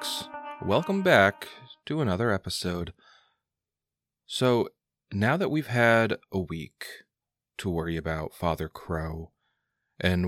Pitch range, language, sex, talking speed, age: 85-105 Hz, English, male, 105 wpm, 30-49